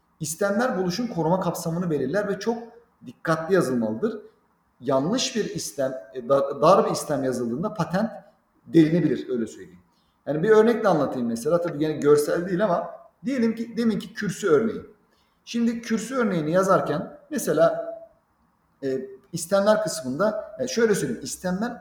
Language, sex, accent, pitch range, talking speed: Turkish, male, native, 165-220 Hz, 130 wpm